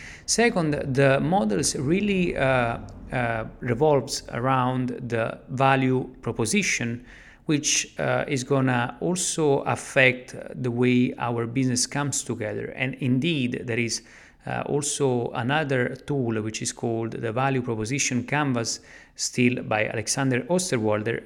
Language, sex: English, male